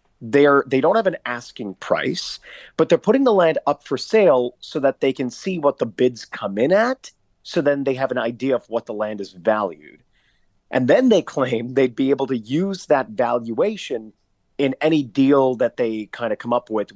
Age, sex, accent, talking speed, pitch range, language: 30-49, male, American, 210 wpm, 115-145 Hz, English